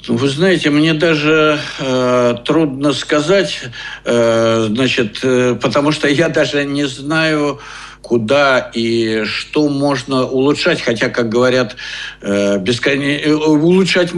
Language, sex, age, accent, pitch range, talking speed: Russian, male, 60-79, native, 110-145 Hz, 115 wpm